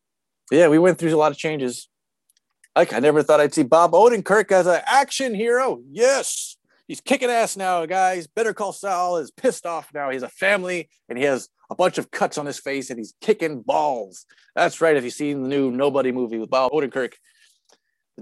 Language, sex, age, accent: English, male, 30-49, American